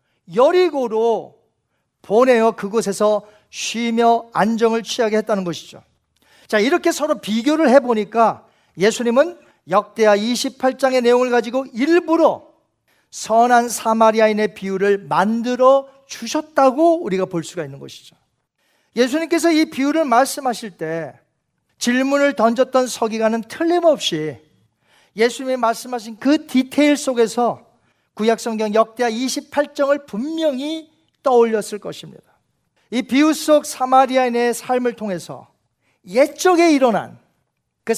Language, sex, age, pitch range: Korean, male, 40-59, 210-280 Hz